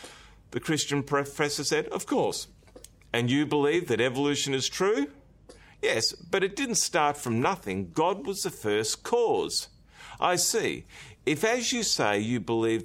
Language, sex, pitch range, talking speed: English, male, 105-155 Hz, 155 wpm